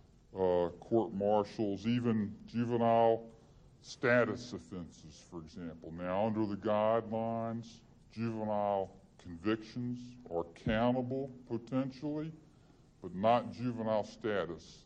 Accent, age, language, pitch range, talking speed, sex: American, 50-69, English, 100-140 Hz, 90 wpm, female